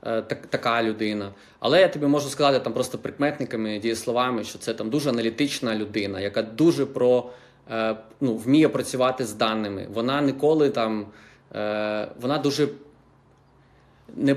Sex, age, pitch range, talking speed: male, 20-39, 120-155 Hz, 115 wpm